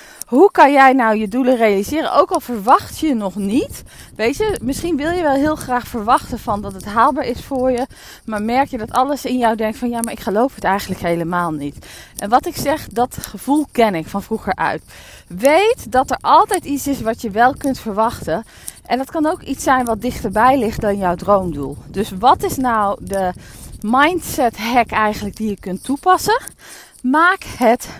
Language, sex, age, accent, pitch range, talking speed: Dutch, female, 20-39, Dutch, 215-280 Hz, 200 wpm